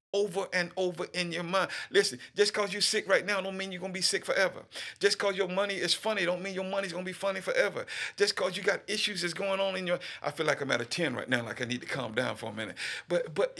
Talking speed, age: 290 wpm, 50-69